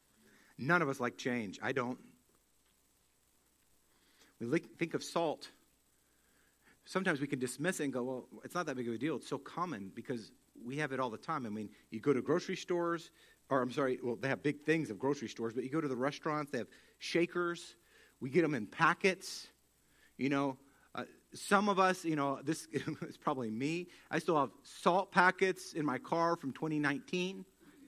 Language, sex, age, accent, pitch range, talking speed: English, male, 50-69, American, 130-180 Hz, 195 wpm